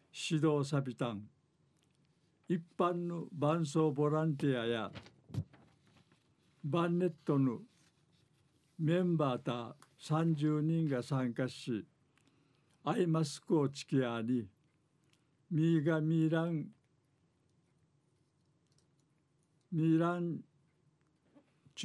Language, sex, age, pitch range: Japanese, male, 60-79, 140-160 Hz